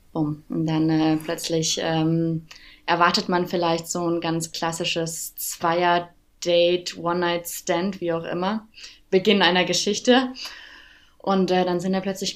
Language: German